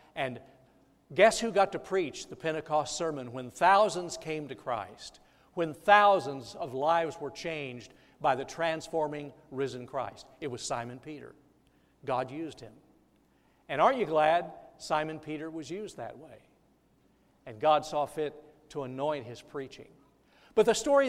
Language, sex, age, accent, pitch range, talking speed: English, male, 60-79, American, 140-170 Hz, 150 wpm